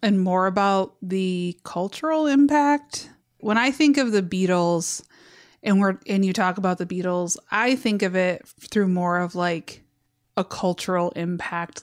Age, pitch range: 20-39, 175-215 Hz